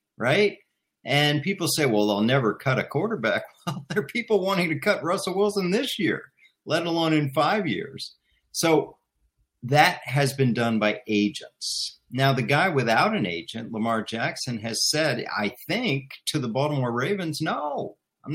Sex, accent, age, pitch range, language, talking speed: male, American, 50-69, 105-150 Hz, English, 170 wpm